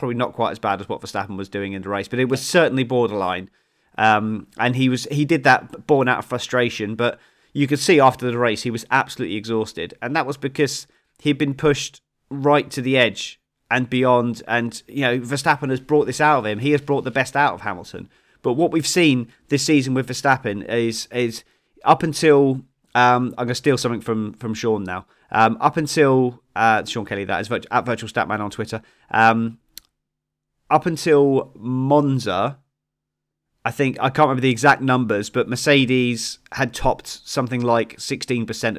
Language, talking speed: English, 195 wpm